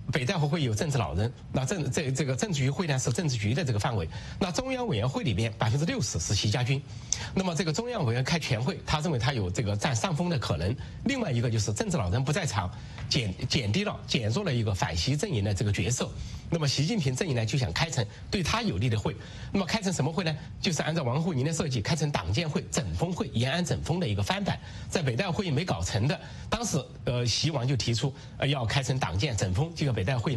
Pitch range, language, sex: 115-155 Hz, English, male